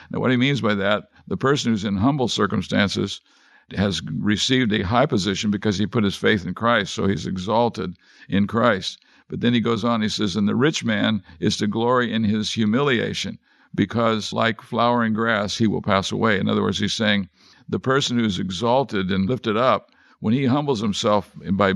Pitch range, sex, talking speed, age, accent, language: 105-120 Hz, male, 195 wpm, 50-69, American, English